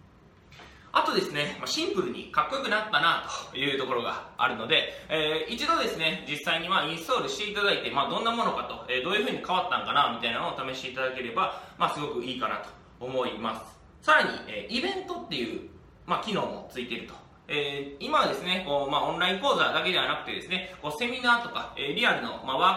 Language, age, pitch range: Japanese, 20-39, 140-230 Hz